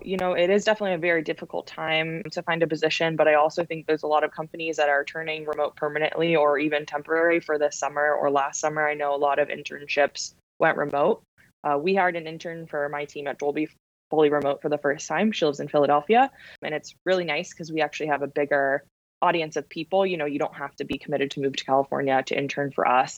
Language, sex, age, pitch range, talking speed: English, female, 20-39, 145-160 Hz, 240 wpm